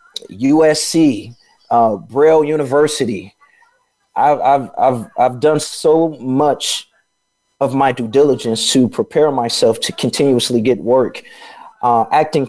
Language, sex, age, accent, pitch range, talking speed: English, male, 30-49, American, 125-170 Hz, 115 wpm